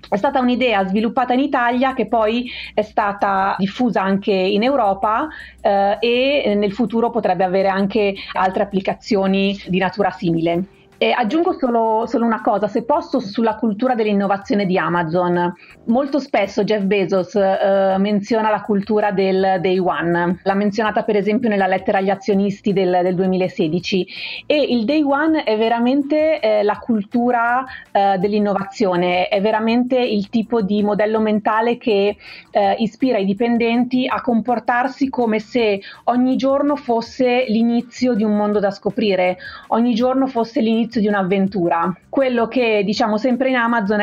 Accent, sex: native, female